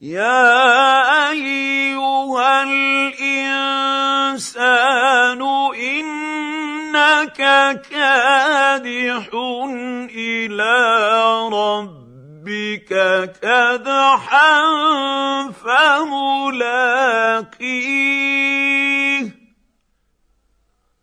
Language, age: Arabic, 50-69